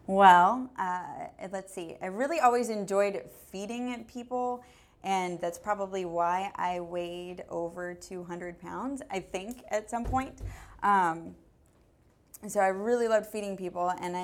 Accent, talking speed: American, 135 wpm